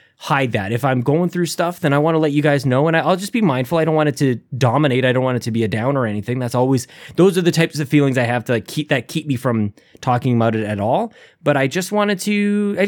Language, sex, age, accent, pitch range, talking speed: English, male, 20-39, American, 130-175 Hz, 295 wpm